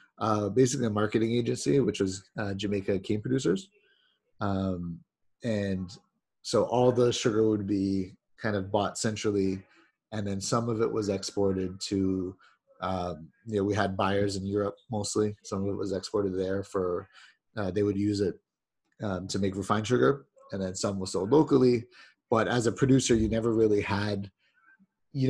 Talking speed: 170 wpm